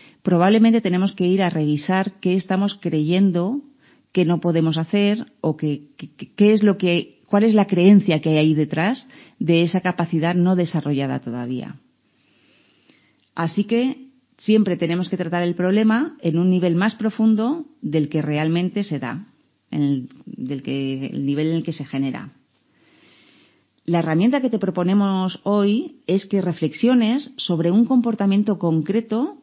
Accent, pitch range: Spanish, 155-215 Hz